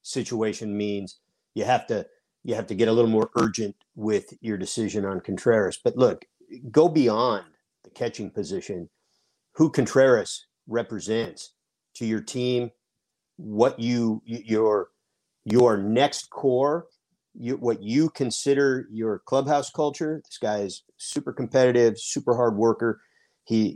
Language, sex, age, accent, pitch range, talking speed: English, male, 50-69, American, 110-145 Hz, 135 wpm